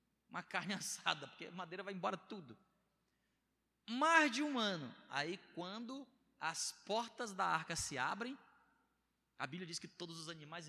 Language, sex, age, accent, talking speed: Portuguese, male, 20-39, Brazilian, 150 wpm